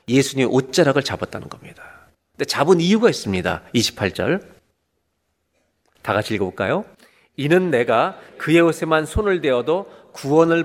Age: 40-59